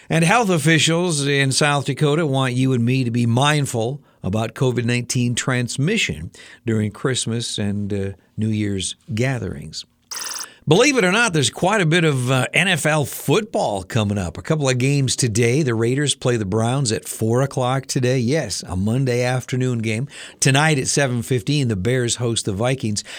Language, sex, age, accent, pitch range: Japanese, male, 60-79, American, 110-140 Hz